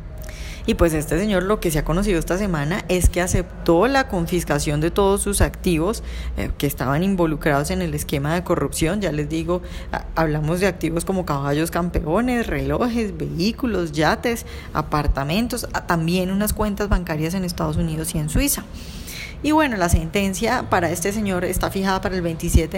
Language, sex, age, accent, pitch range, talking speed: Spanish, female, 10-29, Colombian, 160-205 Hz, 165 wpm